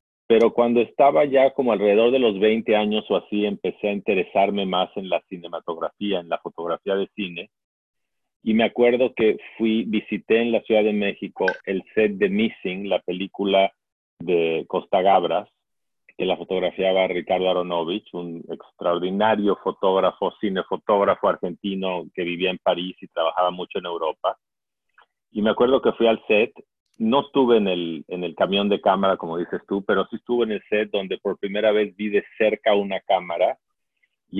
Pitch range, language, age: 95-115 Hz, English, 40-59